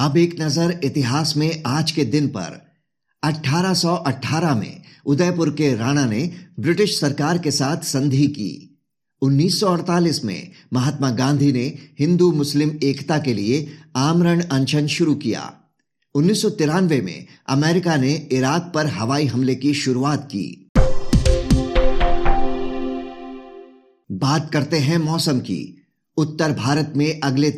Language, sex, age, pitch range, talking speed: Hindi, male, 50-69, 130-155 Hz, 115 wpm